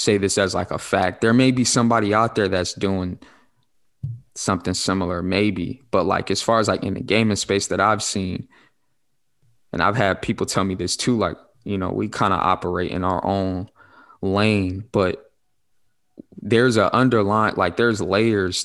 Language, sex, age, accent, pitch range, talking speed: English, male, 20-39, American, 95-110 Hz, 180 wpm